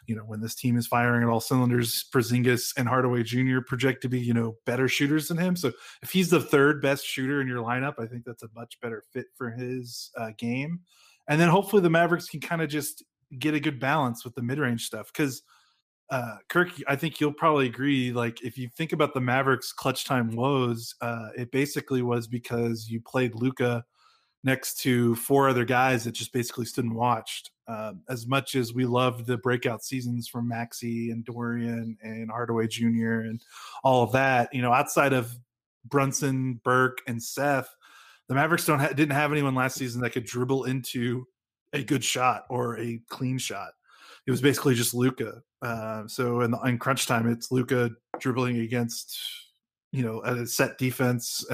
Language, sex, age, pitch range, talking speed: English, male, 20-39, 120-135 Hz, 190 wpm